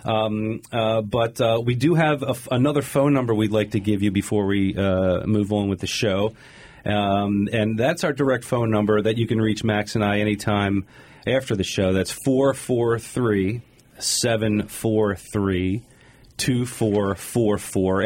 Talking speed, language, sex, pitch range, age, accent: 150 wpm, English, male, 105-125 Hz, 40-59, American